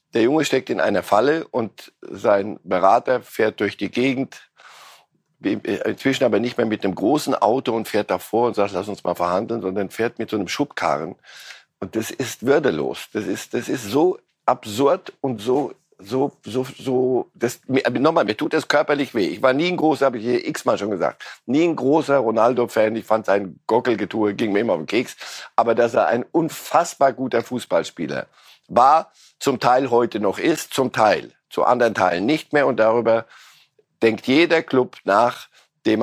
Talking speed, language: 185 wpm, German